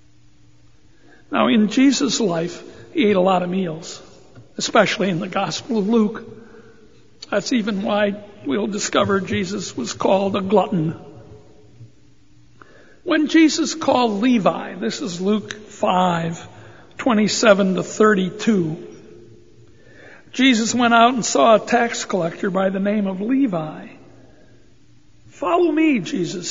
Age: 60-79